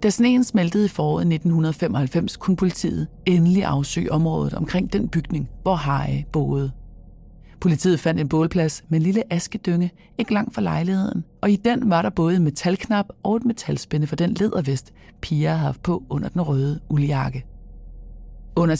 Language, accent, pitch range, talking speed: English, Danish, 150-185 Hz, 160 wpm